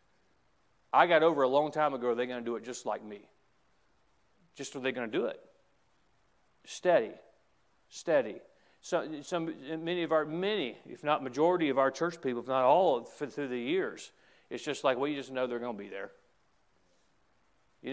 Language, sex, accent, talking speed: English, male, American, 200 wpm